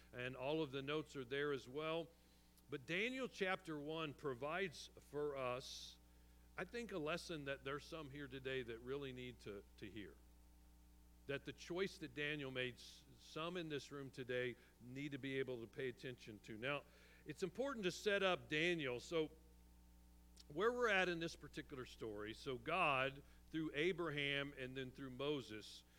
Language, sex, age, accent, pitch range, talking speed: English, male, 50-69, American, 125-160 Hz, 170 wpm